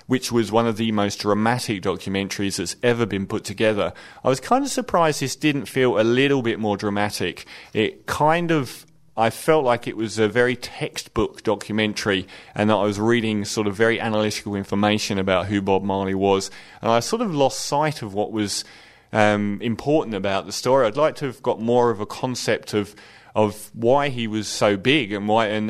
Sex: male